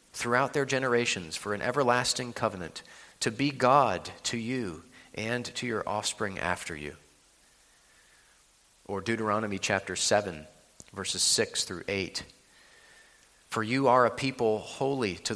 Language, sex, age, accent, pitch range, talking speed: English, male, 40-59, American, 95-125 Hz, 130 wpm